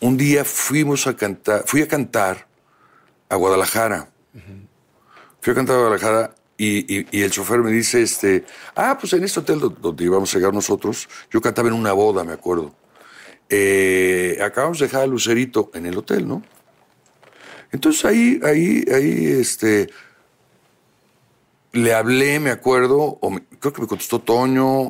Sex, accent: male, Mexican